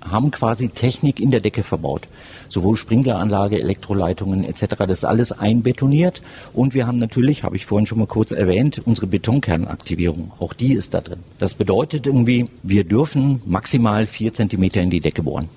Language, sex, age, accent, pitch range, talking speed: German, male, 50-69, German, 95-125 Hz, 175 wpm